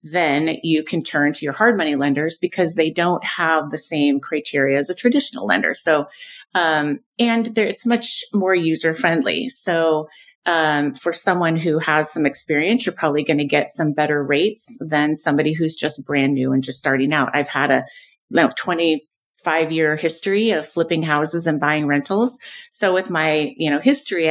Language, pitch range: English, 150-195 Hz